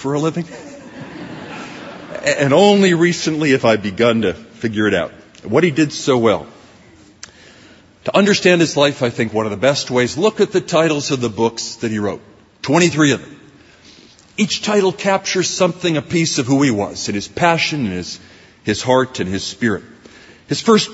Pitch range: 115-185 Hz